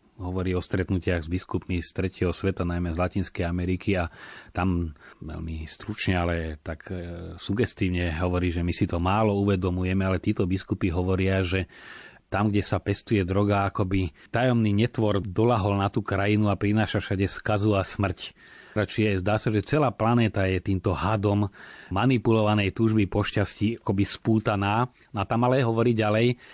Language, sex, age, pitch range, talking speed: Slovak, male, 30-49, 95-110 Hz, 160 wpm